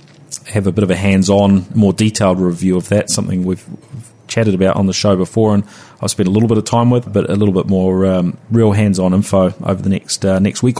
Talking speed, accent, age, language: 240 wpm, Australian, 30-49, English